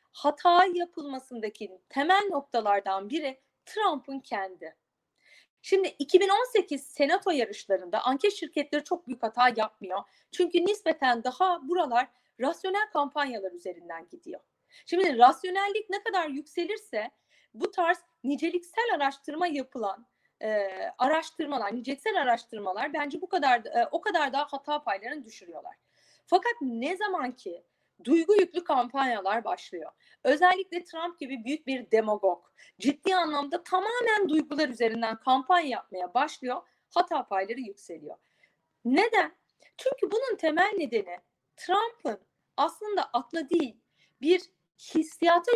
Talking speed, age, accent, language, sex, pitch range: 110 wpm, 30-49, native, Turkish, female, 245-360 Hz